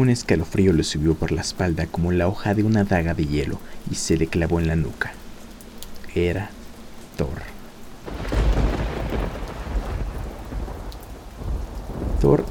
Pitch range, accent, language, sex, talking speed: 85-100 Hz, Mexican, Spanish, male, 120 wpm